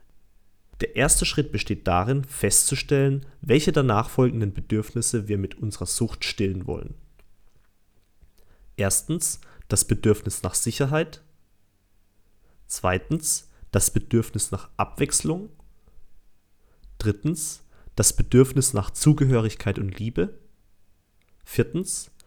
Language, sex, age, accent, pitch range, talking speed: German, male, 30-49, German, 95-135 Hz, 90 wpm